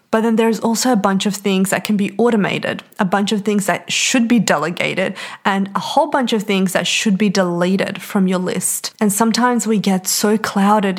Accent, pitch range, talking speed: Australian, 185-225 Hz, 215 wpm